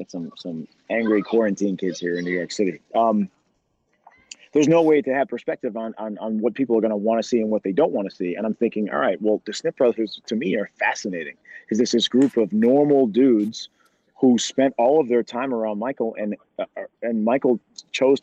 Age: 30-49